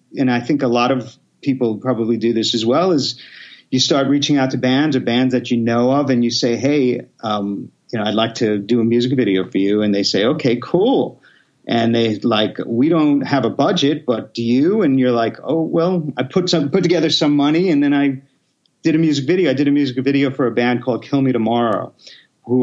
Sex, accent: male, American